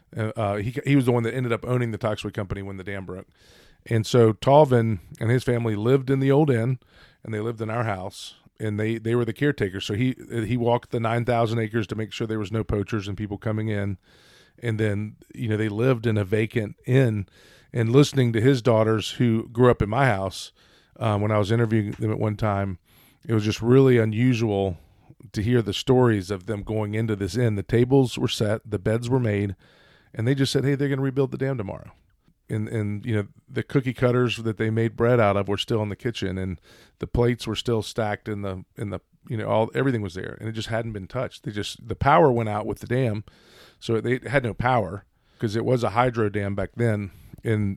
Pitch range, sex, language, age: 105-125 Hz, male, English, 40-59